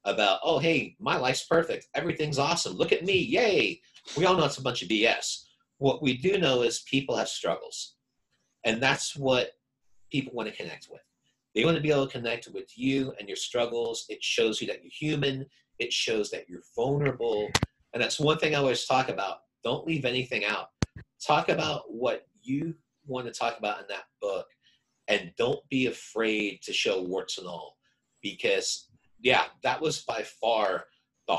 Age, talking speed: 40-59, 185 wpm